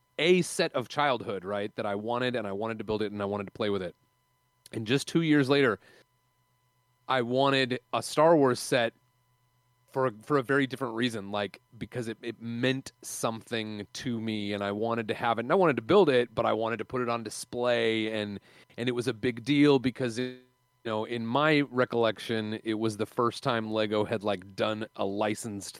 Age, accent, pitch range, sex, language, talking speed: 30-49, American, 100-130 Hz, male, English, 210 wpm